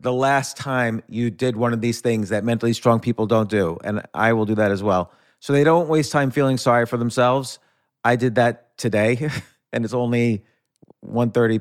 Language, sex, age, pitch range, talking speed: English, male, 40-59, 110-140 Hz, 200 wpm